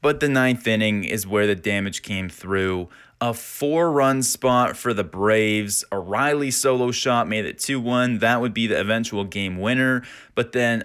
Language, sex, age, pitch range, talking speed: English, male, 20-39, 105-135 Hz, 175 wpm